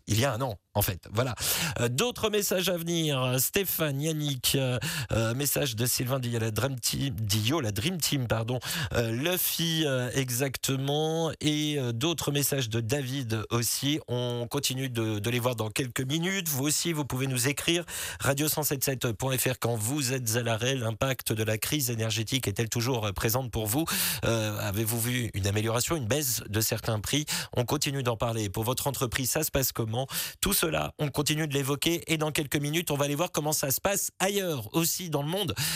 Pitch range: 110-145 Hz